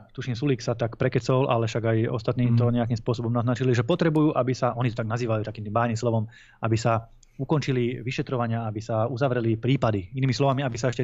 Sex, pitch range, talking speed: male, 115-135 Hz, 200 wpm